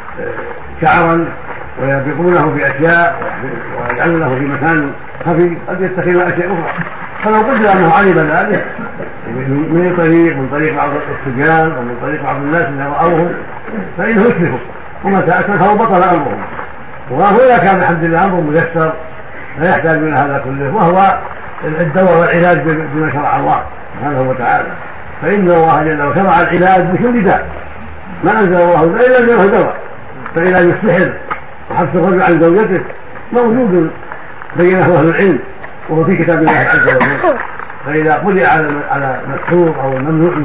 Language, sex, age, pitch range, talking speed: Arabic, male, 60-79, 150-180 Hz, 135 wpm